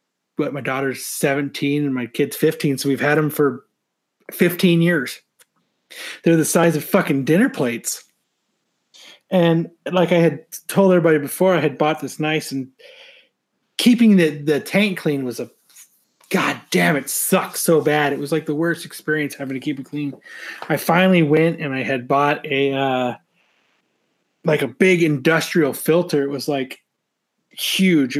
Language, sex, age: English, male, 30-49